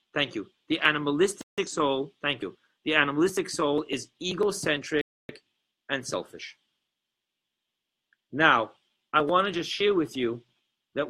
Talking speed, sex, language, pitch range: 125 wpm, male, English, 125-160 Hz